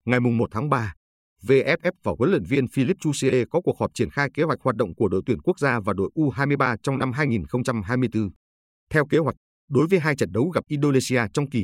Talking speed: 220 wpm